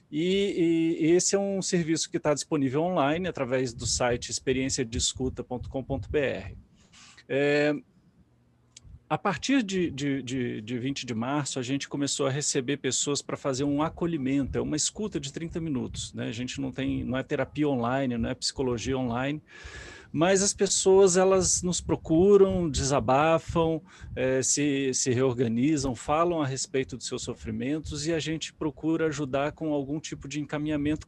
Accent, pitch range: Brazilian, 130-170 Hz